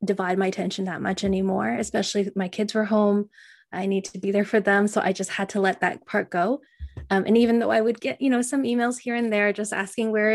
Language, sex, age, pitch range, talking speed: English, female, 20-39, 195-230 Hz, 260 wpm